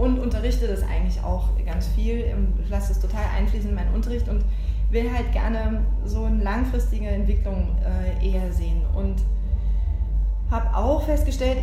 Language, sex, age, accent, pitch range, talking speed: German, female, 20-39, German, 70-90 Hz, 145 wpm